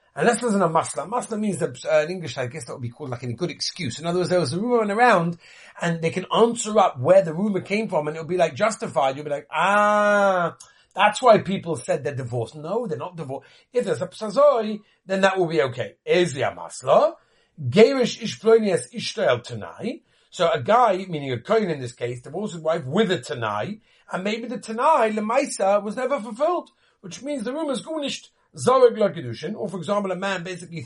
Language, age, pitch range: English, 50-69, 160-225 Hz